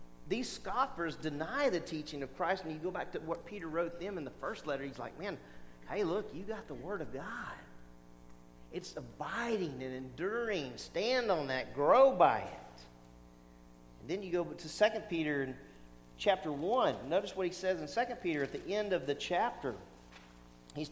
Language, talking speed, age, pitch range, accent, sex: English, 185 wpm, 40-59, 130-205 Hz, American, male